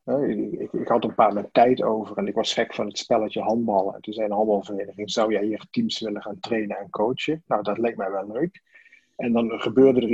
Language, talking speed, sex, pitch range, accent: Dutch, 250 wpm, male, 110-140 Hz, Dutch